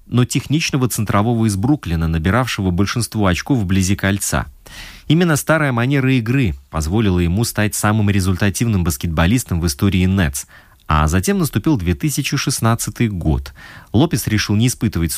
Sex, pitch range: male, 90-130 Hz